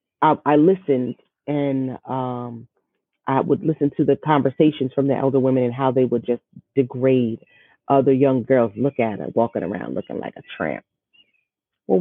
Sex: female